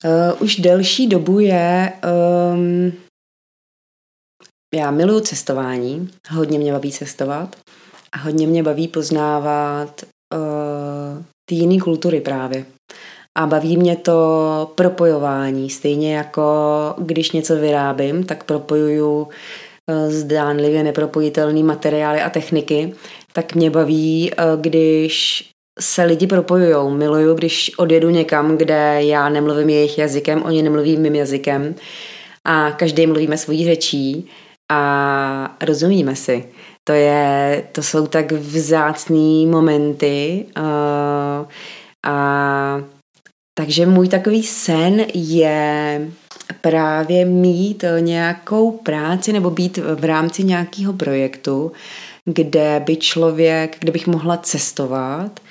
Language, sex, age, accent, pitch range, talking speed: Czech, female, 20-39, native, 150-170 Hz, 105 wpm